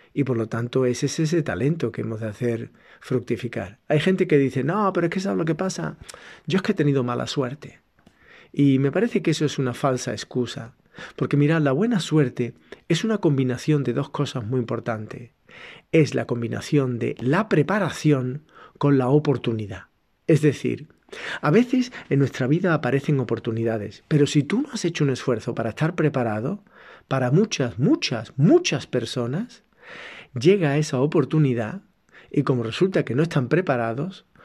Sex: male